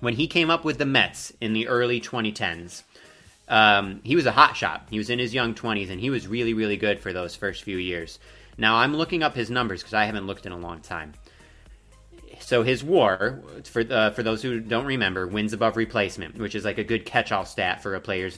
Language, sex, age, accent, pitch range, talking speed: English, male, 30-49, American, 105-135 Hz, 230 wpm